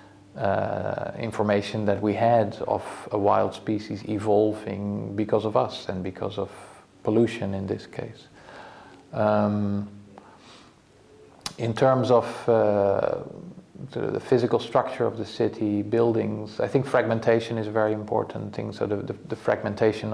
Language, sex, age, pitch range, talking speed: English, male, 40-59, 100-110 Hz, 135 wpm